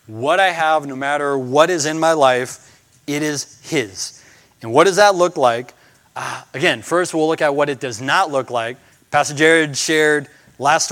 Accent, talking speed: American, 190 wpm